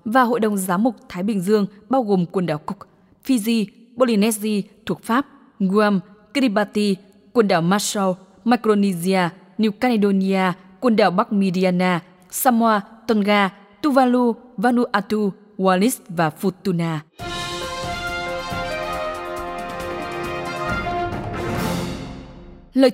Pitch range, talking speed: 175-230 Hz, 95 wpm